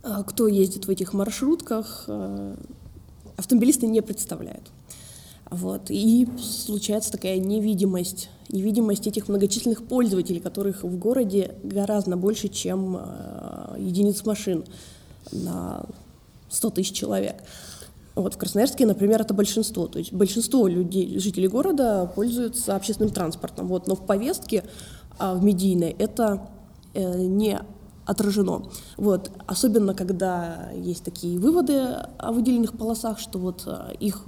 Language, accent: Russian, native